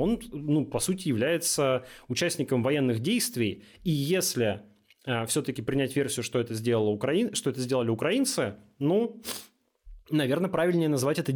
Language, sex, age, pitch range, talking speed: Russian, male, 20-39, 125-160 Hz, 125 wpm